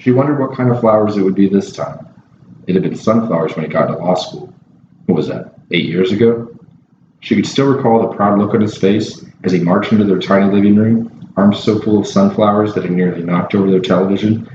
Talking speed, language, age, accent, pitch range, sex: 235 wpm, English, 40-59, American, 90-115 Hz, male